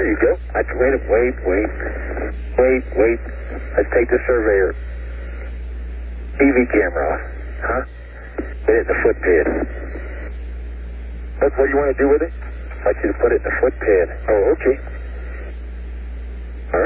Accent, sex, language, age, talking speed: American, male, English, 50-69, 145 wpm